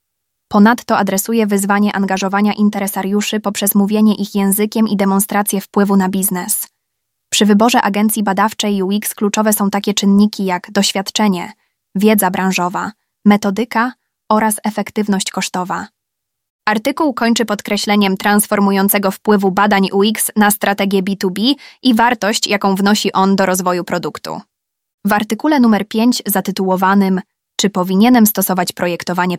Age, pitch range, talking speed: 20-39, 190-215 Hz, 120 wpm